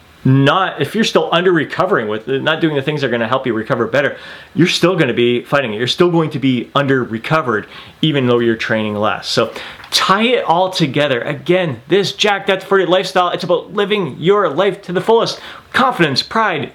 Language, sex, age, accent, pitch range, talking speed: English, male, 30-49, American, 135-185 Hz, 210 wpm